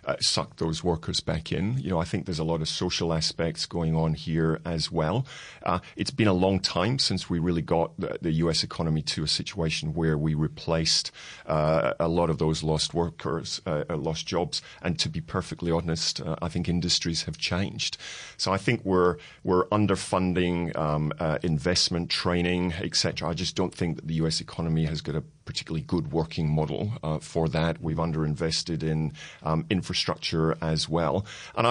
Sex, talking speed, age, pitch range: male, 190 wpm, 40-59, 80-85 Hz